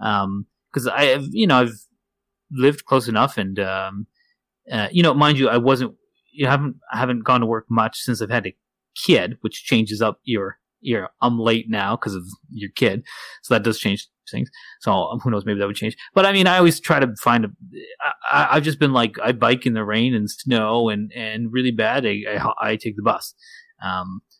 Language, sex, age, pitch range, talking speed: English, male, 30-49, 115-165 Hz, 220 wpm